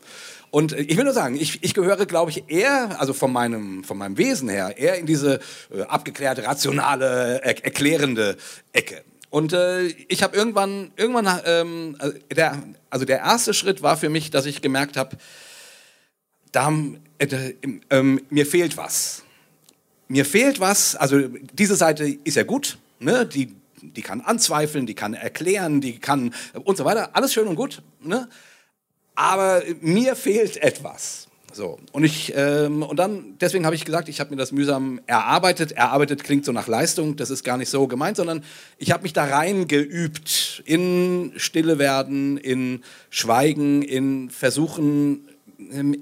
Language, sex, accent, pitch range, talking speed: German, male, German, 135-180 Hz, 165 wpm